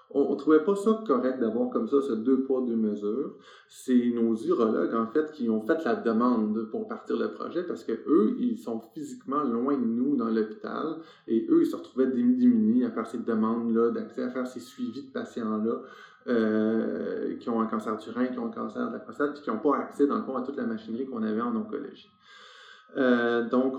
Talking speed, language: 225 wpm, French